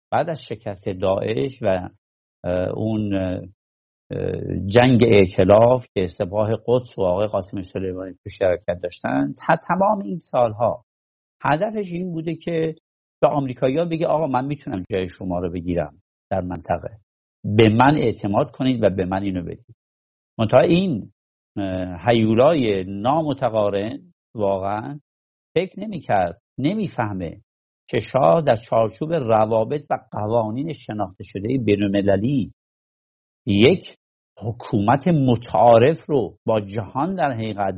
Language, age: English, 50-69